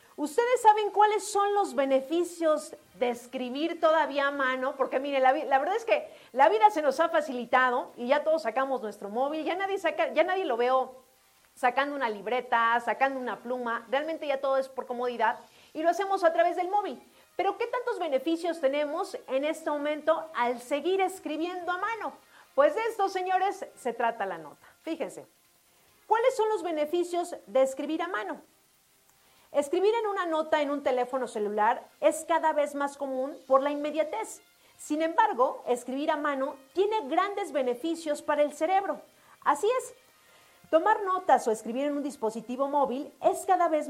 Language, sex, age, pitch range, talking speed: Spanish, female, 40-59, 255-360 Hz, 170 wpm